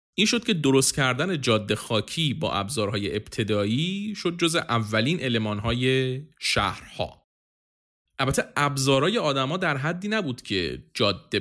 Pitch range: 110-150 Hz